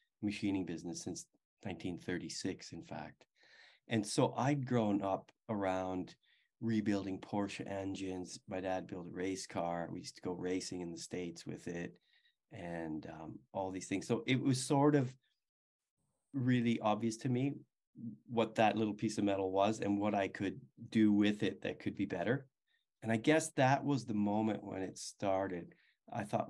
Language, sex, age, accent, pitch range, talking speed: English, male, 30-49, American, 95-120 Hz, 170 wpm